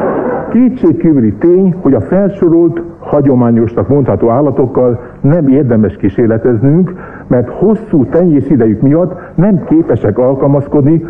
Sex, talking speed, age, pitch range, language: male, 105 wpm, 60-79, 115-165 Hz, Hungarian